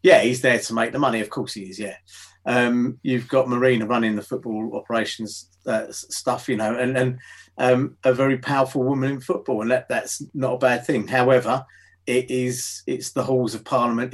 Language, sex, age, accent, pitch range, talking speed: English, male, 30-49, British, 115-130 Hz, 200 wpm